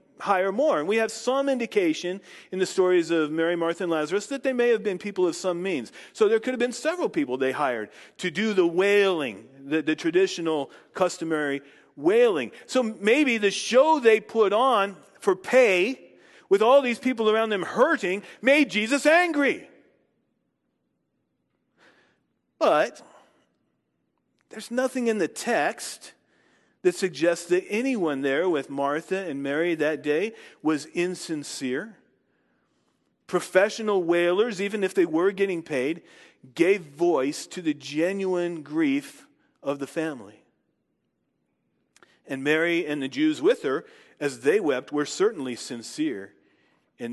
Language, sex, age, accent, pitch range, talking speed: English, male, 40-59, American, 160-270 Hz, 140 wpm